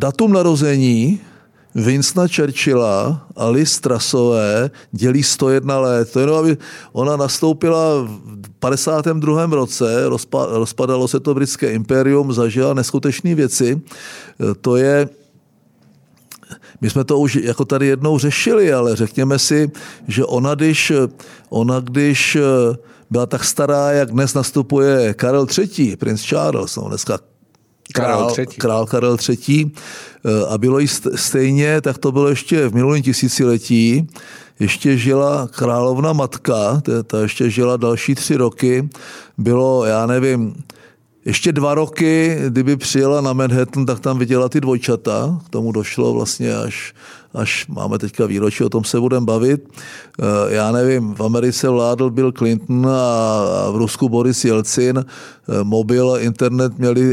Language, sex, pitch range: Czech, male, 120-145 Hz